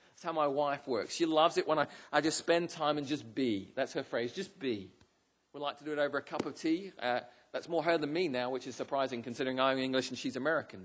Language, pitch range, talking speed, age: English, 145-175 Hz, 265 wpm, 40-59